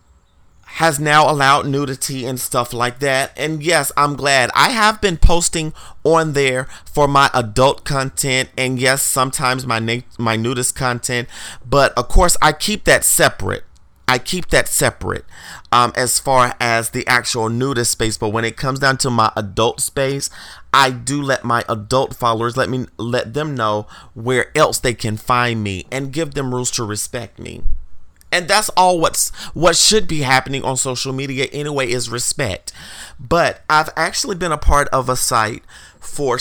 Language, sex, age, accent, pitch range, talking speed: English, male, 30-49, American, 115-145 Hz, 175 wpm